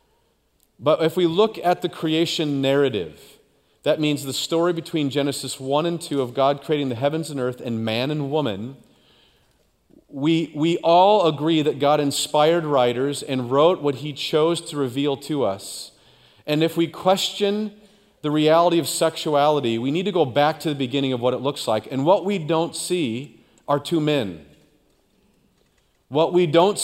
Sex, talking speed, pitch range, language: male, 170 wpm, 140-175 Hz, English